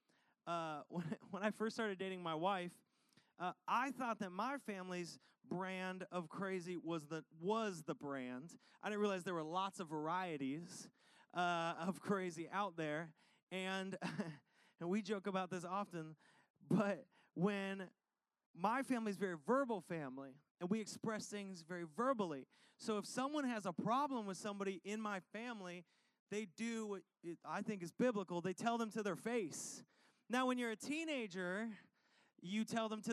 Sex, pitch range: male, 175-220 Hz